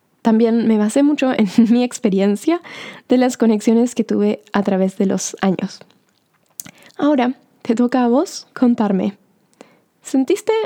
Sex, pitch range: female, 210-255 Hz